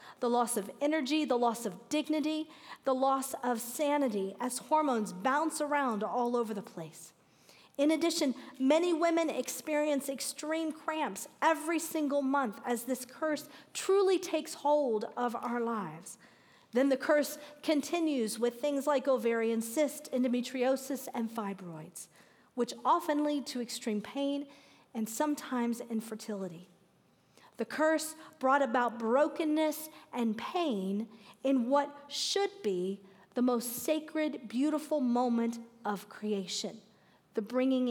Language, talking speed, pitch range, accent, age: English, 125 wpm, 230-295 Hz, American, 40-59